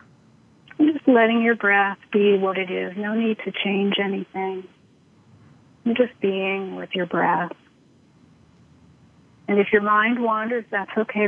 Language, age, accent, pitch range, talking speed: English, 40-59, American, 180-215 Hz, 135 wpm